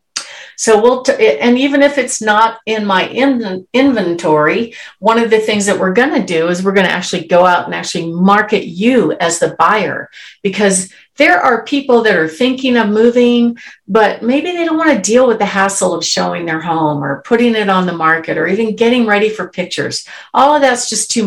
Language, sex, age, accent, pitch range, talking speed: English, female, 50-69, American, 190-245 Hz, 210 wpm